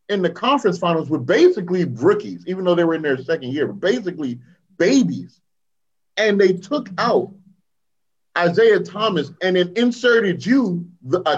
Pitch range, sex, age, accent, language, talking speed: 150-185 Hz, male, 30-49, American, English, 160 wpm